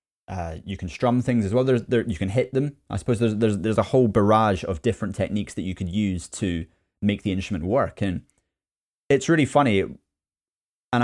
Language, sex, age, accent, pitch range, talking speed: English, male, 20-39, British, 95-115 Hz, 205 wpm